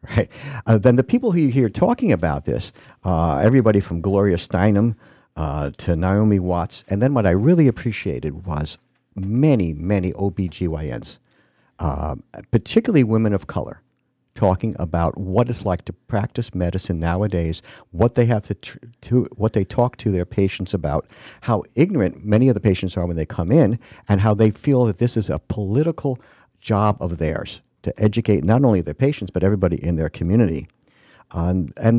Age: 50-69